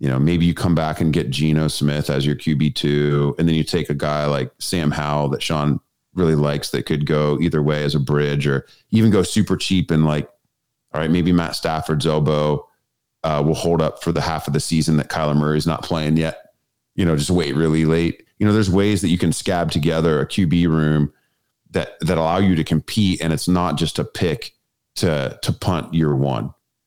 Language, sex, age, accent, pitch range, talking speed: English, male, 30-49, American, 75-90 Hz, 225 wpm